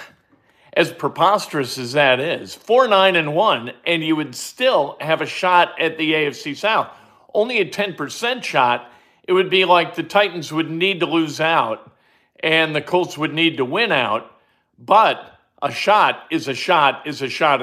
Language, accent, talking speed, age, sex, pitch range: English, American, 170 wpm, 50-69, male, 135-175 Hz